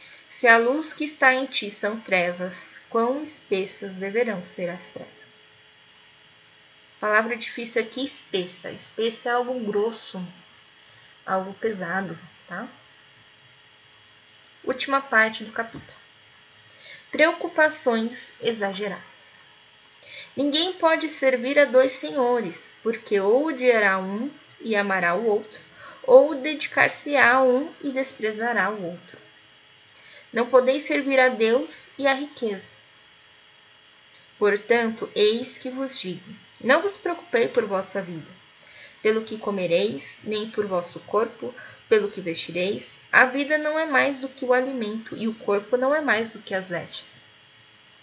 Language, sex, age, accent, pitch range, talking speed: Portuguese, female, 10-29, Brazilian, 180-260 Hz, 130 wpm